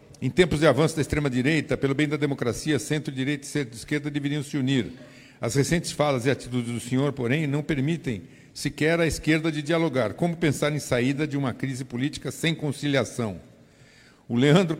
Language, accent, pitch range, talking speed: Portuguese, Brazilian, 120-150 Hz, 175 wpm